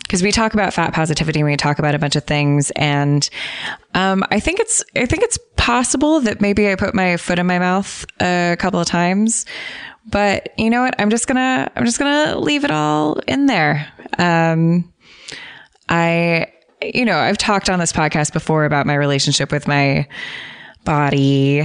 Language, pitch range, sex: English, 145-185 Hz, female